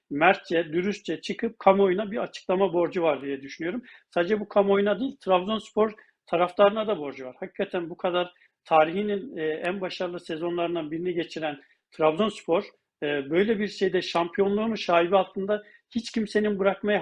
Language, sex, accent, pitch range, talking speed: Turkish, male, native, 180-215 Hz, 135 wpm